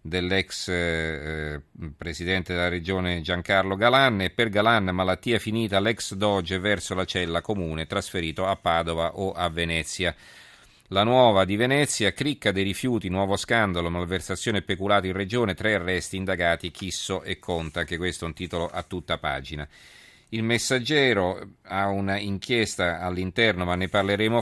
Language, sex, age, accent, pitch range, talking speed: Italian, male, 40-59, native, 90-105 Hz, 145 wpm